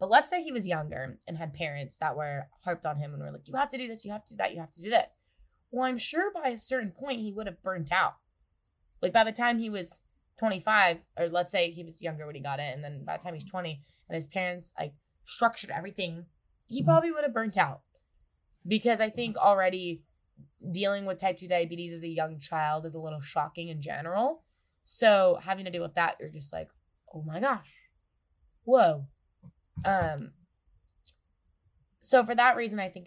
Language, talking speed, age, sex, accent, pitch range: English, 220 wpm, 20-39, female, American, 150-195 Hz